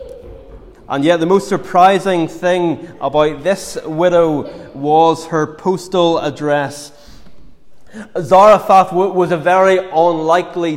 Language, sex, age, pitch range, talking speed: English, male, 20-39, 160-180 Hz, 100 wpm